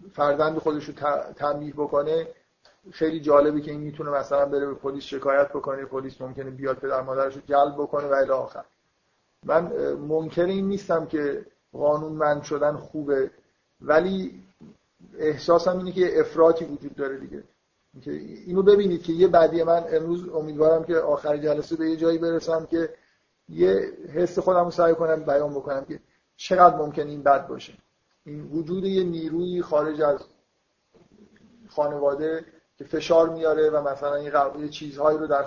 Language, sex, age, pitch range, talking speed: Persian, male, 50-69, 140-165 Hz, 145 wpm